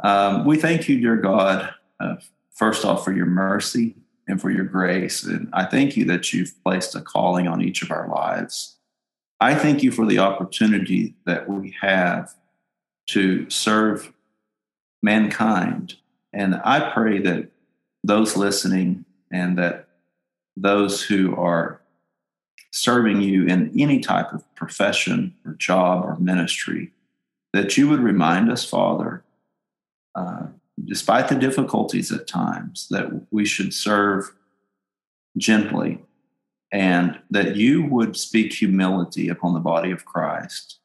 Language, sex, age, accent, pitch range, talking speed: English, male, 40-59, American, 90-105 Hz, 135 wpm